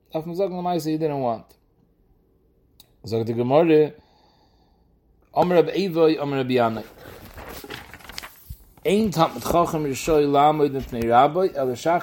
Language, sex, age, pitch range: English, male, 30-49, 130-160 Hz